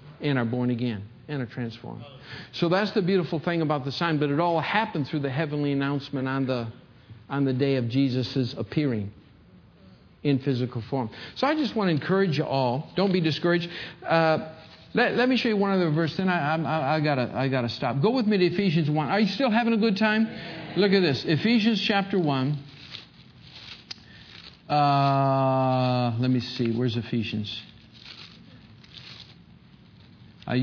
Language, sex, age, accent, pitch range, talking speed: English, male, 50-69, American, 125-155 Hz, 170 wpm